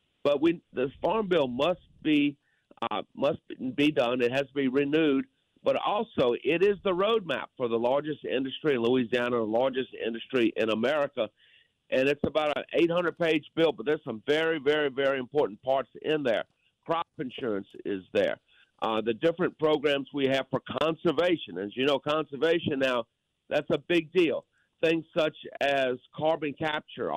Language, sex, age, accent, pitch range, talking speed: English, male, 50-69, American, 130-165 Hz, 165 wpm